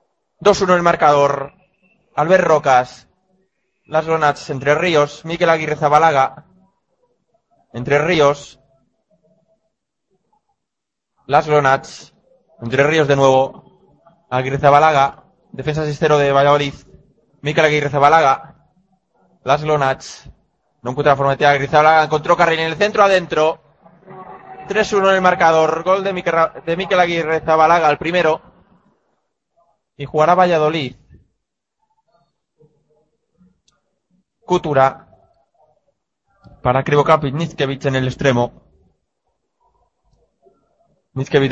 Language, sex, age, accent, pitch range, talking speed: Spanish, male, 20-39, Spanish, 140-185 Hz, 95 wpm